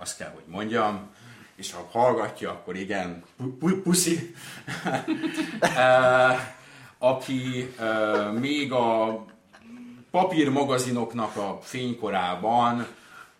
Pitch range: 90-130 Hz